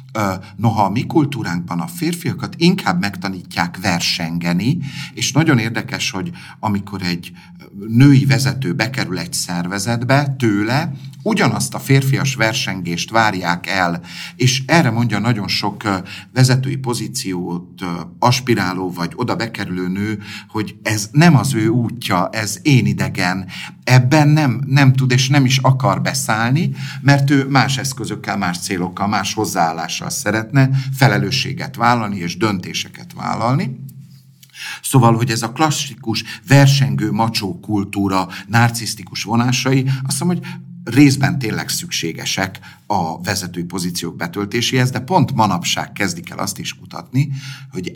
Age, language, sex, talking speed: 50-69, Hungarian, male, 125 wpm